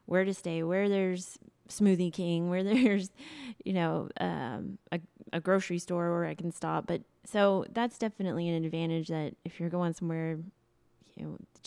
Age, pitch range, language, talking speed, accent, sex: 20-39, 160-190 Hz, English, 175 wpm, American, female